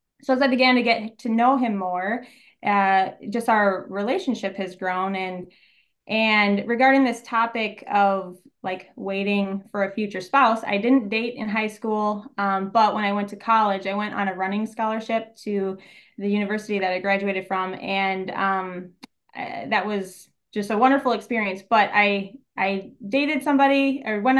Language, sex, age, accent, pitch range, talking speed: English, female, 20-39, American, 195-235 Hz, 170 wpm